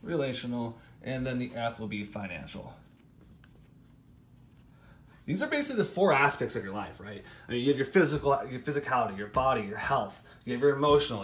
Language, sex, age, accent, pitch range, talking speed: English, male, 30-49, American, 120-140 Hz, 180 wpm